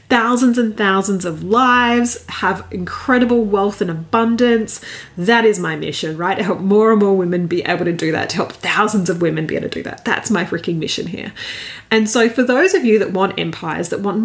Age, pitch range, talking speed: 30-49, 195-250 Hz, 220 wpm